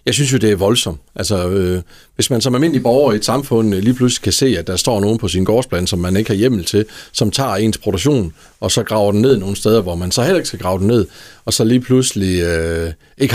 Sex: male